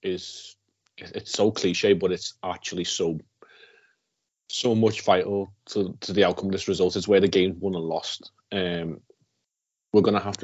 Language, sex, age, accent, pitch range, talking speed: English, male, 30-49, British, 90-100 Hz, 170 wpm